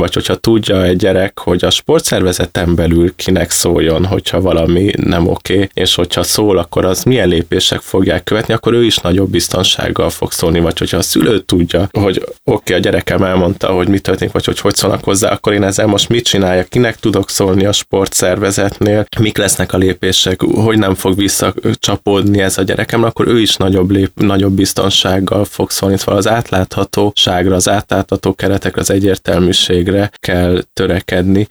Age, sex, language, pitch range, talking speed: 20-39, male, Hungarian, 90-105 Hz, 175 wpm